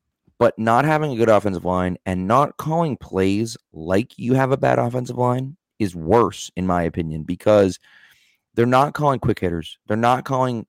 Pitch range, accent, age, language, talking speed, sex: 100-125 Hz, American, 30-49, English, 180 wpm, male